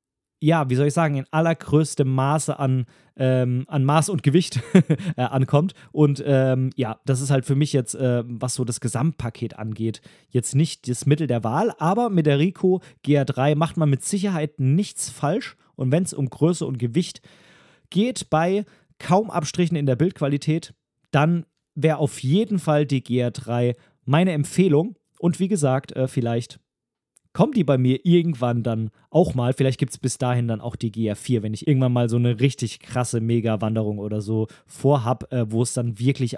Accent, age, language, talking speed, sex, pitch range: German, 30-49, German, 180 wpm, male, 125-160 Hz